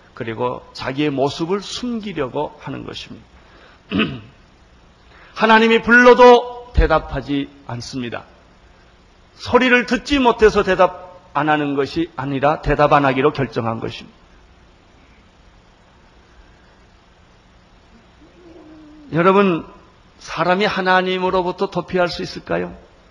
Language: Korean